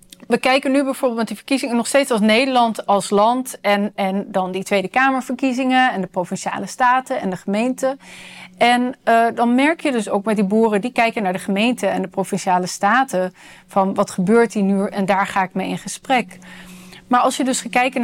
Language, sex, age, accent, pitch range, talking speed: Dutch, female, 30-49, Dutch, 195-245 Hz, 205 wpm